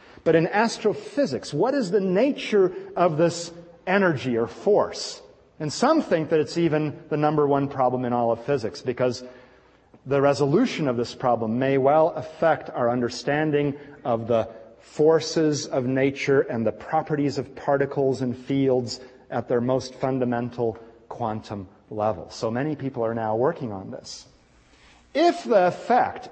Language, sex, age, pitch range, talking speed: English, male, 40-59, 125-190 Hz, 150 wpm